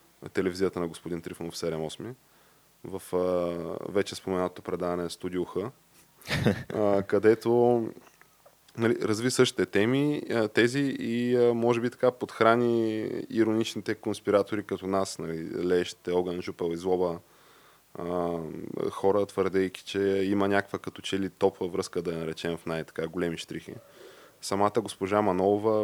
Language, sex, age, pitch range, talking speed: Bulgarian, male, 20-39, 90-110 Hz, 125 wpm